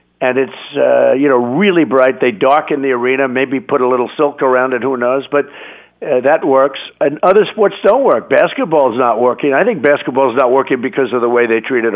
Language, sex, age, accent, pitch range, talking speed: English, male, 60-79, American, 125-150 Hz, 215 wpm